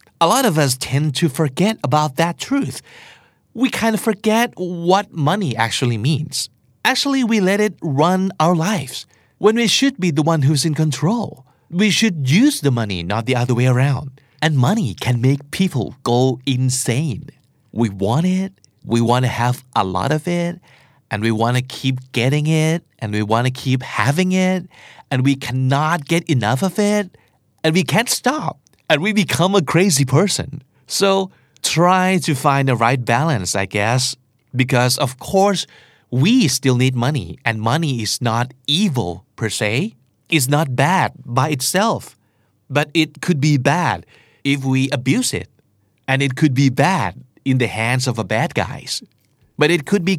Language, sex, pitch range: Thai, male, 125-175 Hz